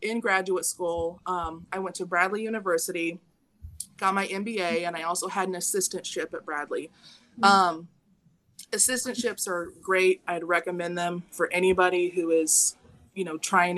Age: 20-39